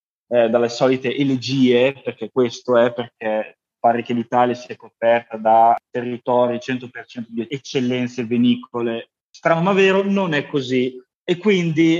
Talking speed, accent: 135 wpm, native